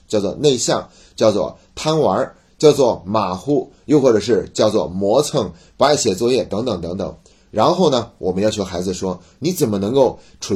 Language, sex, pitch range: Chinese, male, 90-130 Hz